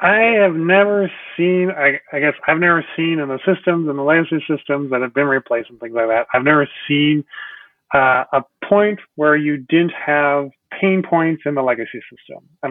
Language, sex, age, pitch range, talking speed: English, male, 30-49, 135-170 Hz, 200 wpm